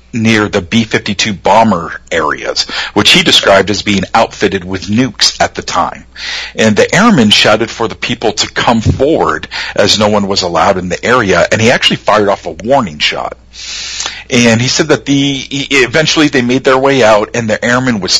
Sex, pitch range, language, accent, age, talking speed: male, 100-130 Hz, English, American, 50-69, 190 wpm